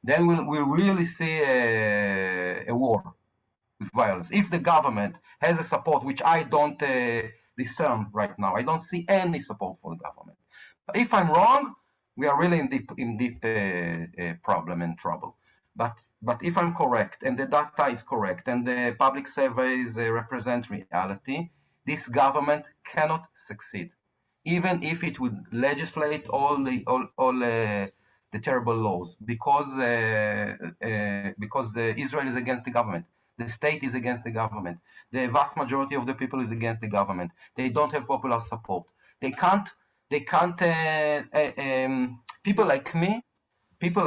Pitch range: 115-160 Hz